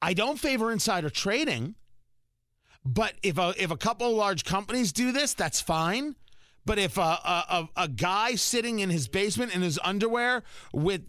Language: English